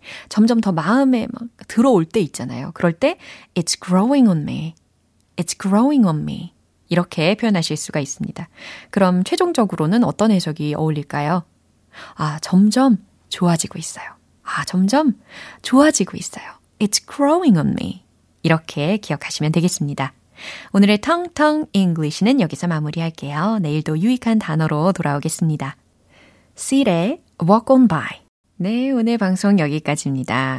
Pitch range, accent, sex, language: 155-235 Hz, native, female, Korean